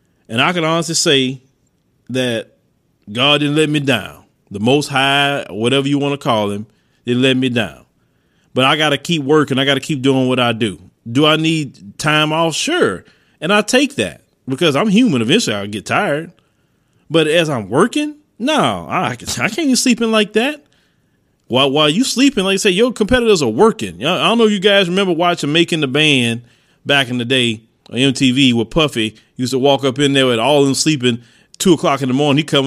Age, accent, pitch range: 30-49, American, 135-215 Hz